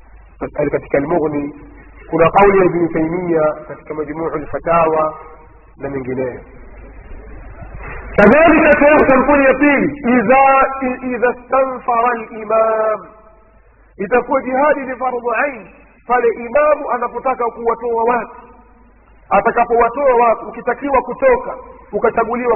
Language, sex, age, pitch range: Swahili, male, 40-59, 180-250 Hz